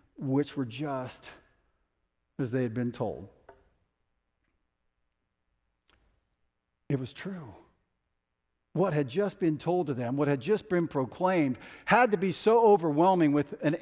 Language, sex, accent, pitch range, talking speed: English, male, American, 125-155 Hz, 130 wpm